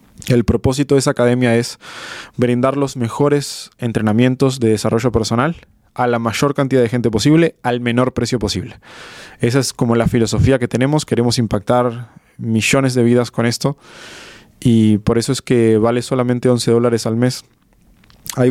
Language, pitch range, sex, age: Spanish, 110-130 Hz, male, 20-39